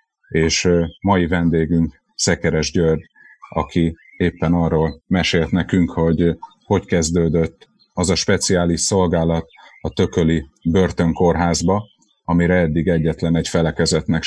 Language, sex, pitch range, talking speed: Hungarian, male, 80-90 Hz, 105 wpm